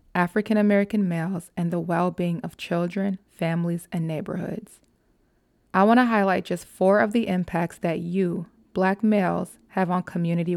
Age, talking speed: 20-39, 150 wpm